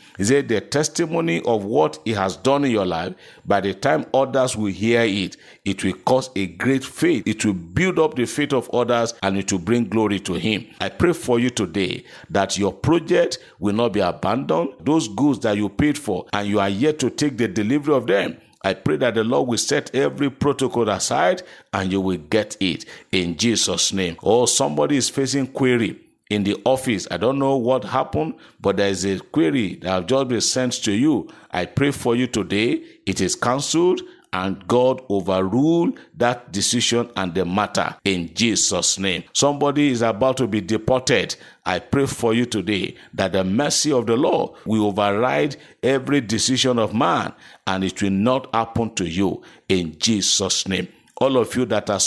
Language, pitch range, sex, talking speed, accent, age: English, 100-130 Hz, male, 195 wpm, Nigerian, 50-69